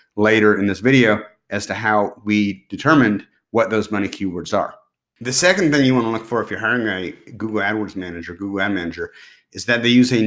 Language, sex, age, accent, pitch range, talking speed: English, male, 30-49, American, 105-125 Hz, 215 wpm